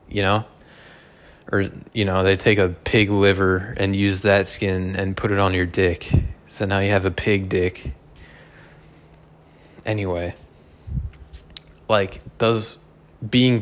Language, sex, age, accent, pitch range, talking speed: English, male, 20-39, American, 90-110 Hz, 135 wpm